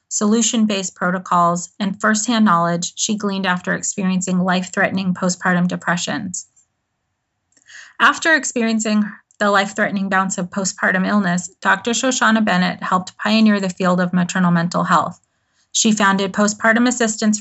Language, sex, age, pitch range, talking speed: English, female, 30-49, 185-220 Hz, 130 wpm